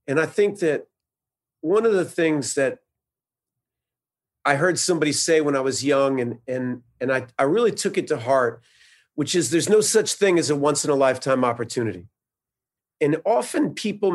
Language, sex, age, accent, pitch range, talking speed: English, male, 40-59, American, 130-175 Hz, 180 wpm